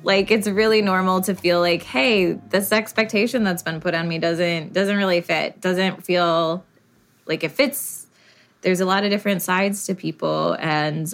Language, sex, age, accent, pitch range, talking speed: English, female, 20-39, American, 165-195 Hz, 180 wpm